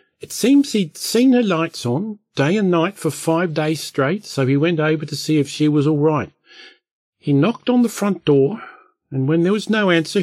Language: English